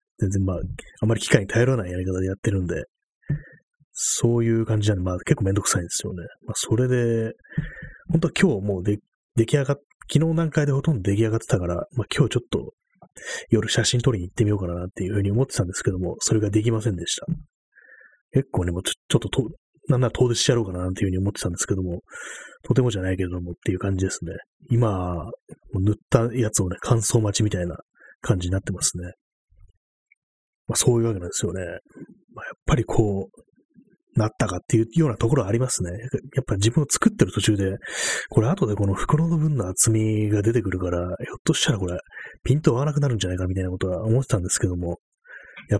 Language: Japanese